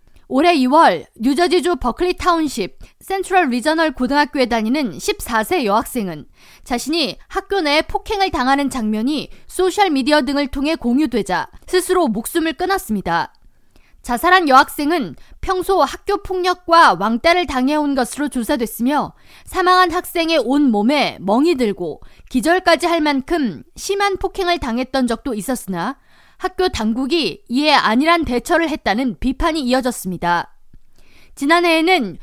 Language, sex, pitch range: Korean, female, 245-345 Hz